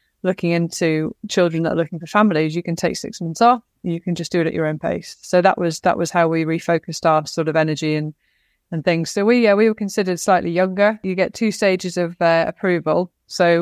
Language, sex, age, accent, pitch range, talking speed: English, female, 20-39, British, 165-185 Hz, 240 wpm